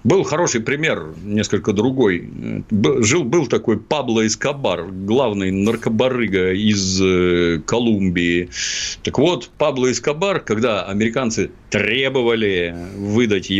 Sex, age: male, 50-69